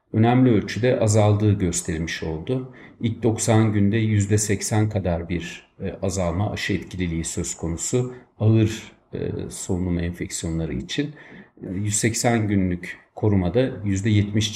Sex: male